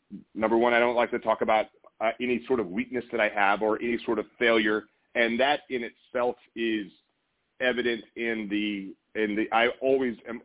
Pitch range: 110-135 Hz